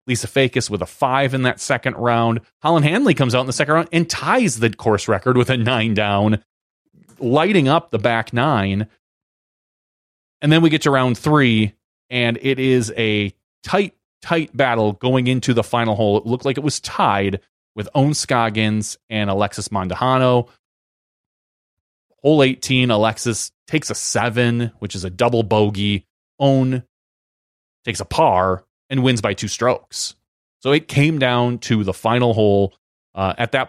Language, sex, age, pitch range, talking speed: English, male, 30-49, 105-125 Hz, 165 wpm